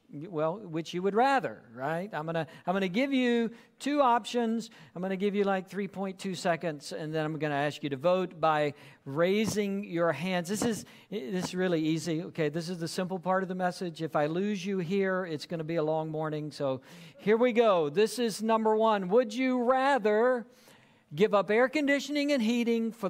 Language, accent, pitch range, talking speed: English, American, 170-235 Hz, 215 wpm